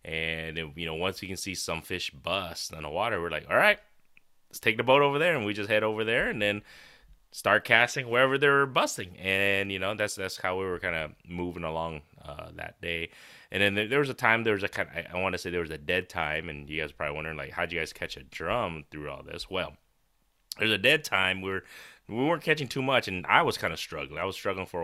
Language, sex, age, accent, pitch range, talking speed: English, male, 20-39, American, 80-115 Hz, 265 wpm